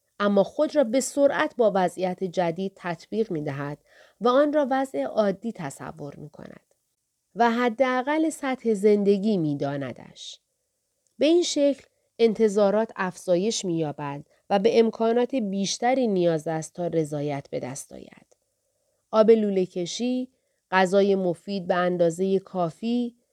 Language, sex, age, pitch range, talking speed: Persian, female, 30-49, 180-245 Hz, 130 wpm